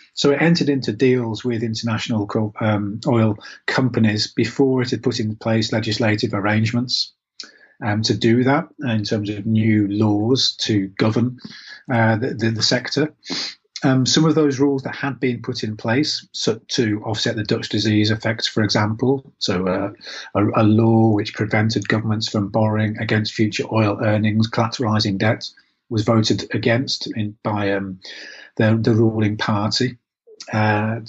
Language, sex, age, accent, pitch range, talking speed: English, male, 30-49, British, 105-120 Hz, 155 wpm